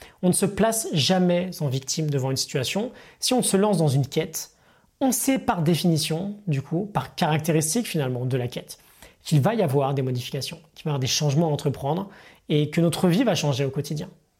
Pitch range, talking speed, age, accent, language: 145-195 Hz, 215 wpm, 20-39, French, French